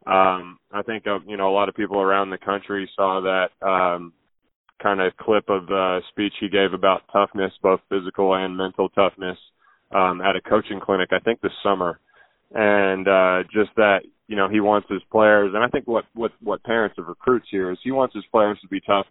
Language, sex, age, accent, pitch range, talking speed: English, male, 20-39, American, 95-105 Hz, 205 wpm